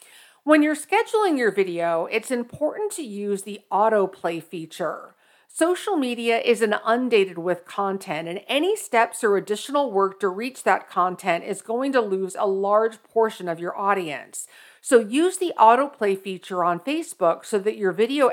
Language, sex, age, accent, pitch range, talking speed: English, female, 50-69, American, 185-265 Hz, 165 wpm